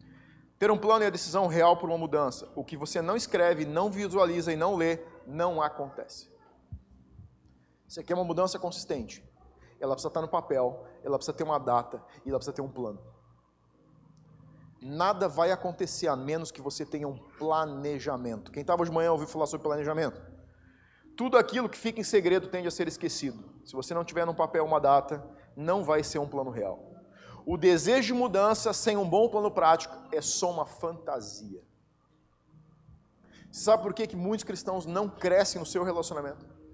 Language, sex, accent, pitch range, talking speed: Portuguese, male, Brazilian, 130-185 Hz, 180 wpm